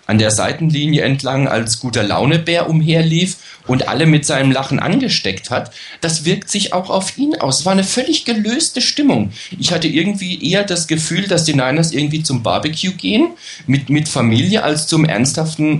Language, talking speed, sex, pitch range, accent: German, 180 wpm, male, 120-165 Hz, German